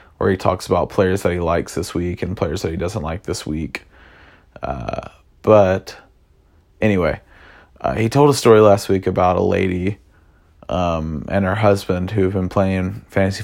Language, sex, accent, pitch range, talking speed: English, male, American, 90-100 Hz, 175 wpm